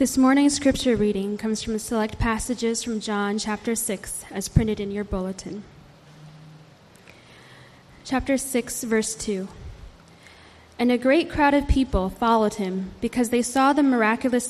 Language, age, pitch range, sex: English, 10-29, 200-250 Hz, female